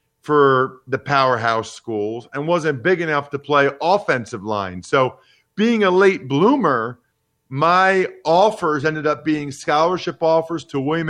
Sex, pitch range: male, 115-145 Hz